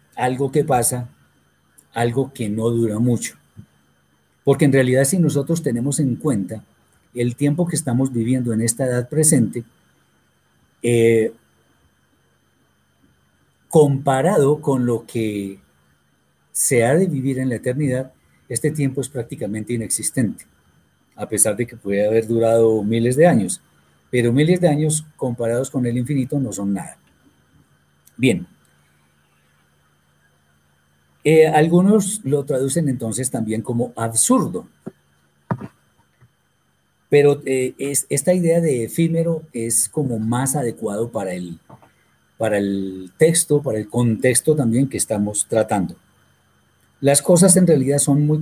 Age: 40-59